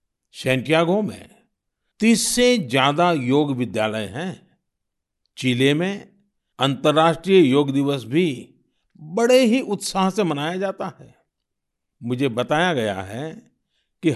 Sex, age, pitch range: male, 60-79, 135-190 Hz